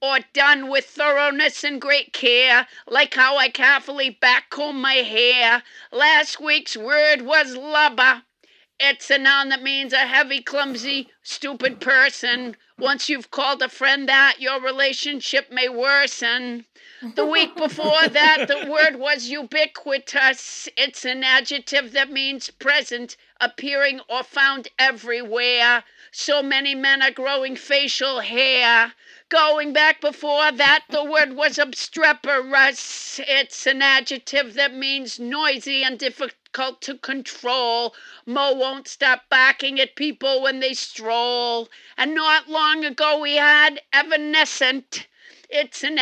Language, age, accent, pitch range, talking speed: English, 50-69, American, 255-290 Hz, 130 wpm